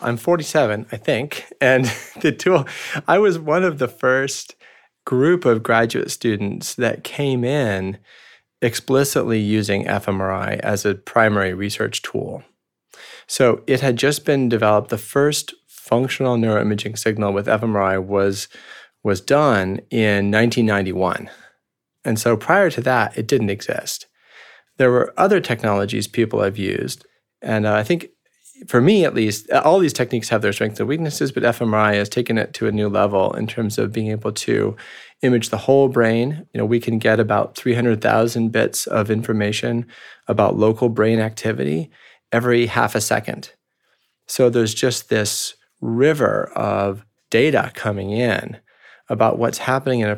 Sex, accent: male, American